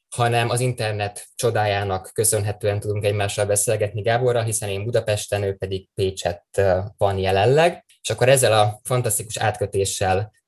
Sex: male